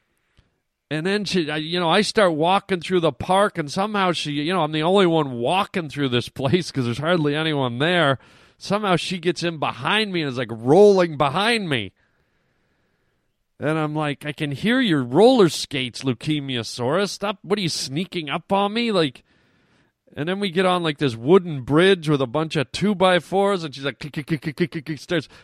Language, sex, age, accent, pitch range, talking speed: English, male, 40-59, American, 125-180 Hz, 185 wpm